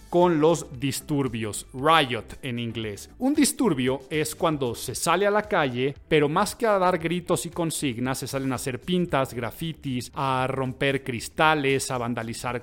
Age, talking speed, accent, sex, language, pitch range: 40-59, 160 wpm, Mexican, male, Spanish, 130-170 Hz